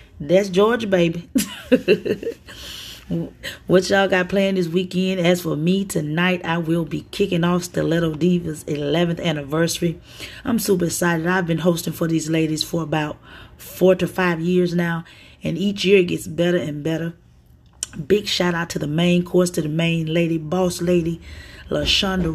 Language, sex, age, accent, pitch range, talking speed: English, female, 30-49, American, 155-180 Hz, 160 wpm